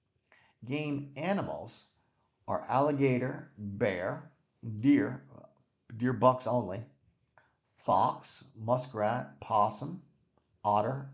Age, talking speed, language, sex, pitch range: 50-69, 70 wpm, English, male, 110-145 Hz